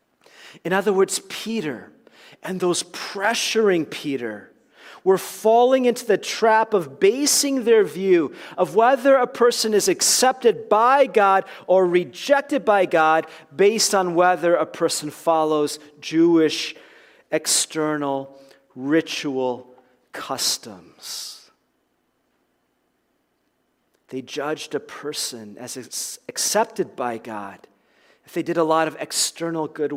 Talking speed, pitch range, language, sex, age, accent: 110 wpm, 155-215 Hz, English, male, 40-59, American